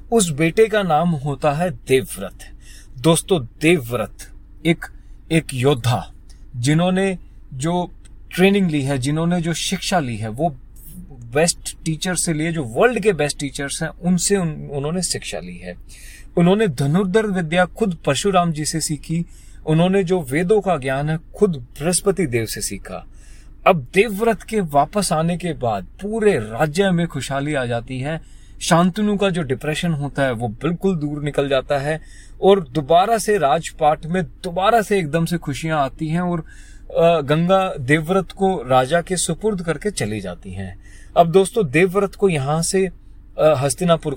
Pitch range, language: 140-185 Hz, Hindi